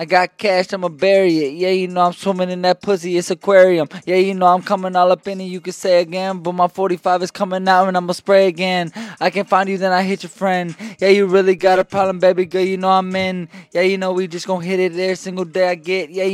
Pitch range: 180-195 Hz